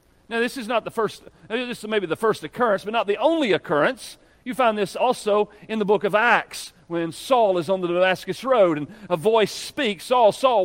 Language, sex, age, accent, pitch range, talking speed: English, male, 40-59, American, 190-275 Hz, 220 wpm